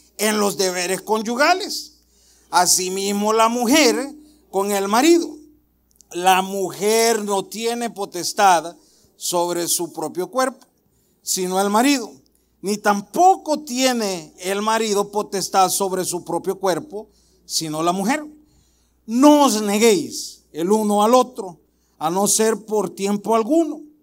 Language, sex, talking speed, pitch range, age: Spanish, male, 120 wpm, 185-240 Hz, 50-69